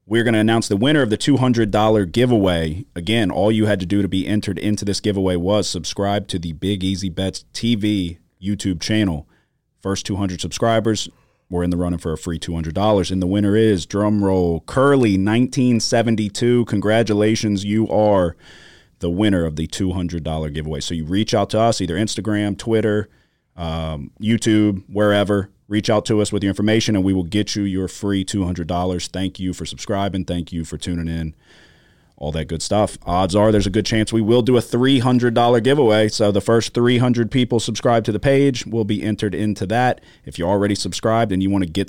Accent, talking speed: American, 190 wpm